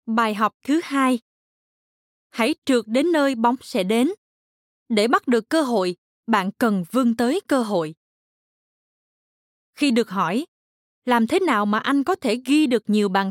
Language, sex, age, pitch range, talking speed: Vietnamese, female, 20-39, 210-265 Hz, 160 wpm